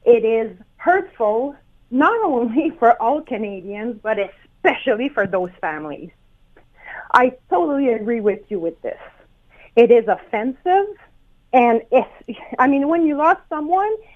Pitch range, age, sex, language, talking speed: 220-305 Hz, 30-49, female, English, 130 wpm